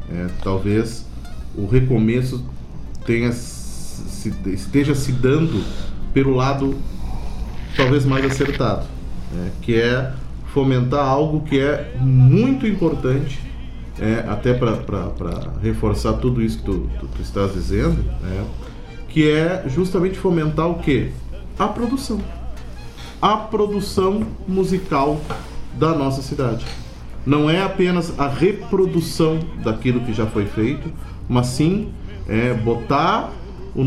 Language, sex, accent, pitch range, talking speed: Portuguese, male, Brazilian, 110-145 Hz, 110 wpm